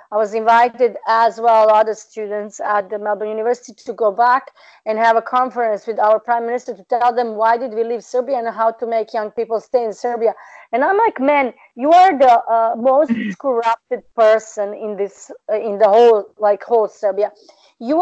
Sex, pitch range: female, 220-265 Hz